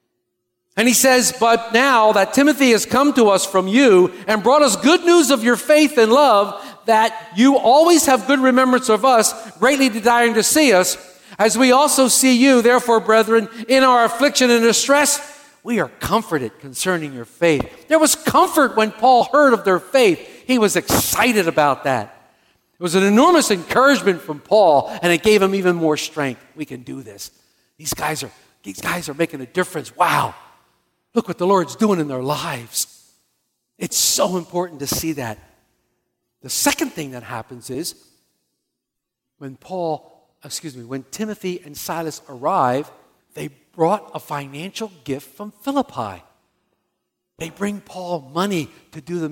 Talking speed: 170 wpm